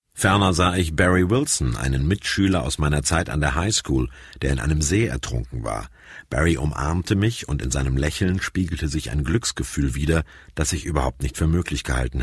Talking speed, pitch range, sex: 185 wpm, 70-100 Hz, male